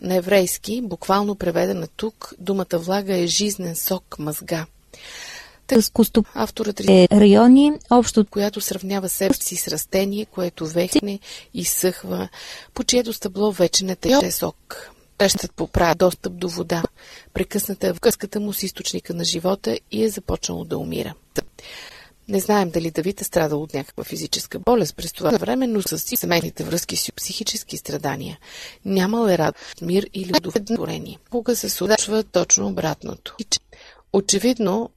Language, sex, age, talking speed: Bulgarian, female, 30-49, 145 wpm